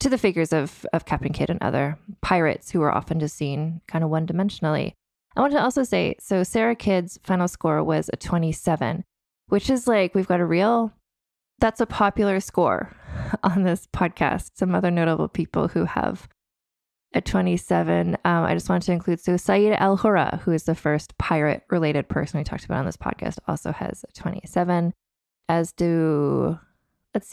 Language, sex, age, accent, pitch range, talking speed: English, female, 20-39, American, 160-200 Hz, 180 wpm